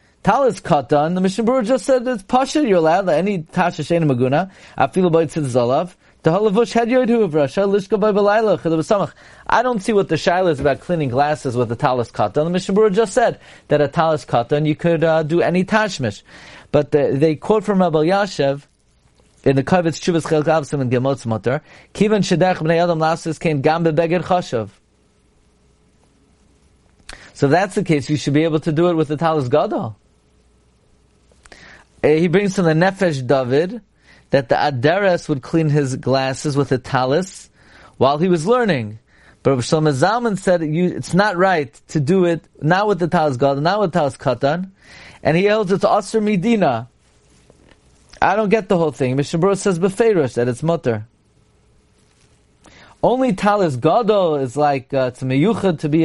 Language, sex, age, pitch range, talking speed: English, male, 40-59, 140-190 Hz, 170 wpm